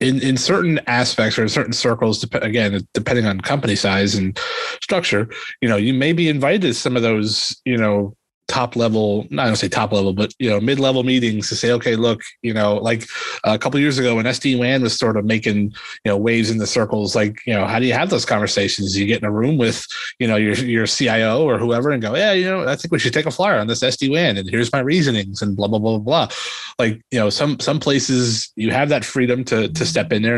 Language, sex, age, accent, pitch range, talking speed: English, male, 30-49, American, 110-130 Hz, 255 wpm